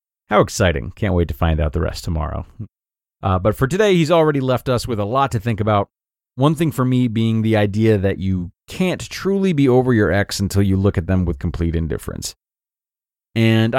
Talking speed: 210 wpm